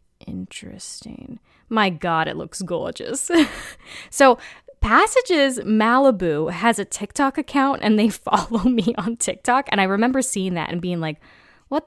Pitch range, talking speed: 170-220 Hz, 140 wpm